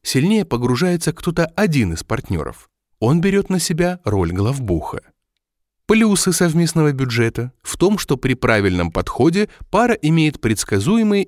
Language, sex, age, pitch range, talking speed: Russian, male, 30-49, 105-175 Hz, 130 wpm